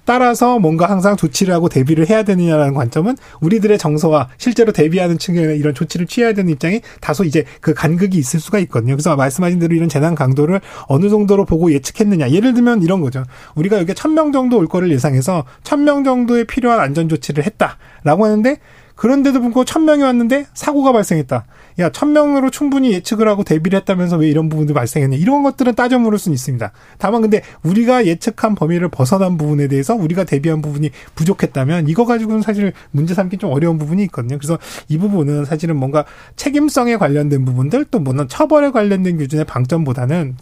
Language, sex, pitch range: Korean, male, 150-225 Hz